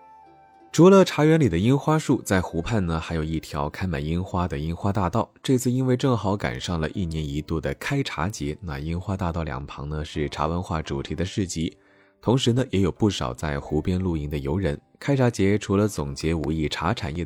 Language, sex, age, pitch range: Chinese, male, 20-39, 80-110 Hz